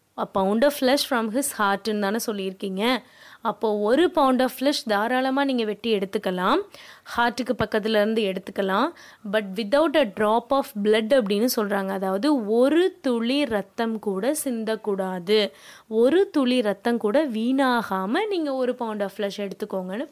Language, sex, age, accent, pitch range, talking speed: Tamil, female, 20-39, native, 205-265 Hz, 130 wpm